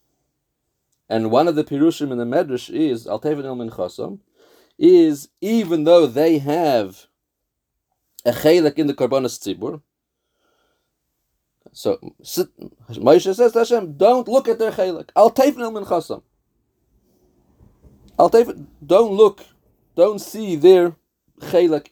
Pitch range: 125-170 Hz